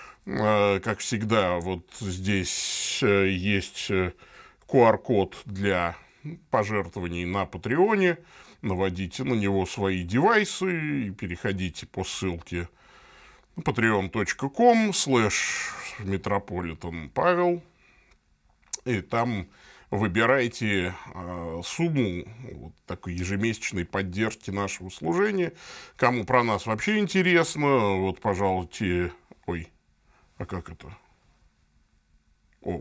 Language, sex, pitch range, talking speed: Russian, male, 90-130 Hz, 80 wpm